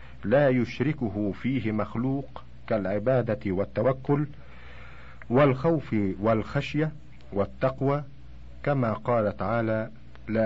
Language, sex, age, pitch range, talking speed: Arabic, male, 50-69, 90-120 Hz, 75 wpm